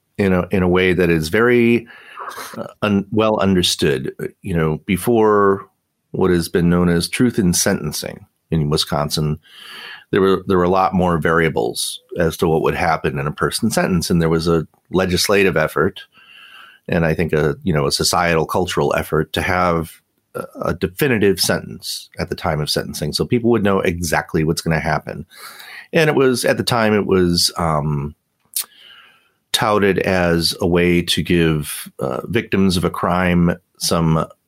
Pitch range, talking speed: 85-95 Hz, 170 wpm